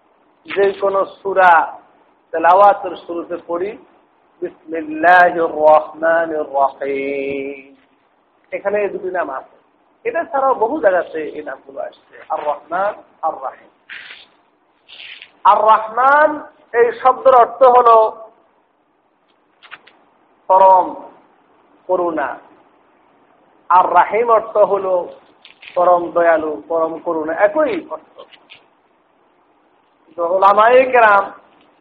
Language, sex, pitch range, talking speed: Bengali, male, 180-240 Hz, 85 wpm